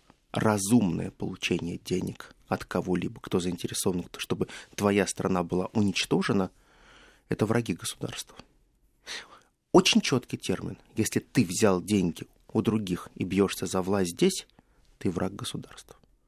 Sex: male